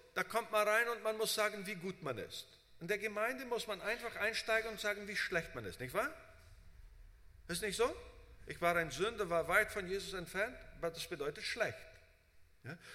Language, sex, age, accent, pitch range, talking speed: German, male, 50-69, German, 165-225 Hz, 205 wpm